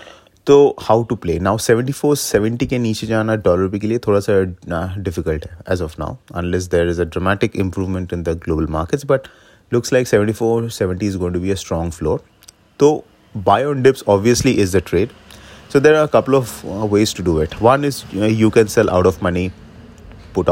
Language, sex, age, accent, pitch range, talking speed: English, male, 30-49, Indian, 90-115 Hz, 190 wpm